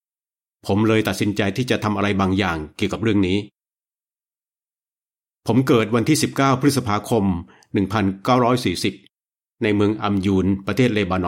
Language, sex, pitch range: Thai, male, 100-130 Hz